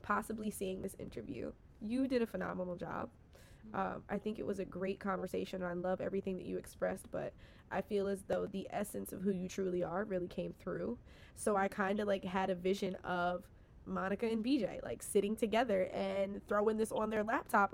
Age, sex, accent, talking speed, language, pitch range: 20-39, female, American, 200 wpm, English, 190-245 Hz